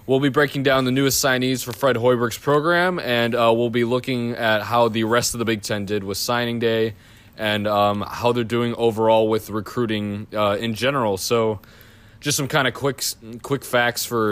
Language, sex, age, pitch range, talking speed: English, male, 20-39, 105-120 Hz, 200 wpm